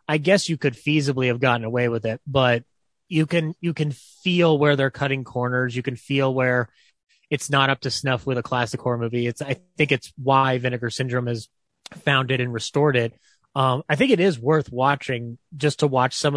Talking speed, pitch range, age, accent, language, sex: 210 wpm, 125-150 Hz, 30-49, American, English, male